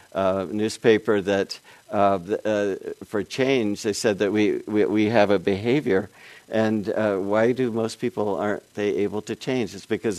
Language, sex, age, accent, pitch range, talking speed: English, male, 60-79, American, 100-115 Hz, 170 wpm